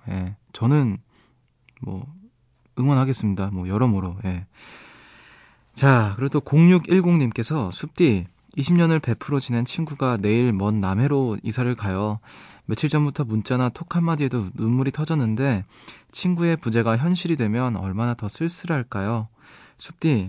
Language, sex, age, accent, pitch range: Korean, male, 20-39, native, 105-135 Hz